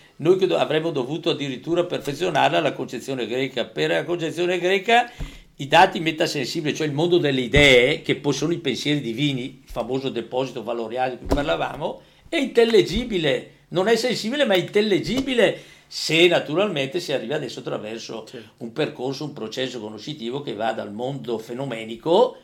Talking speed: 150 wpm